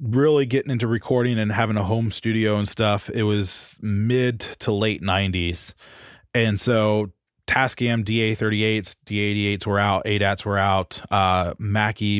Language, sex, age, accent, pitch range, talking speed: English, male, 20-39, American, 100-120 Hz, 150 wpm